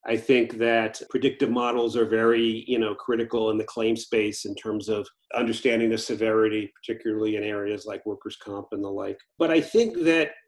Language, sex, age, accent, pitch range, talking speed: English, male, 40-59, American, 110-150 Hz, 190 wpm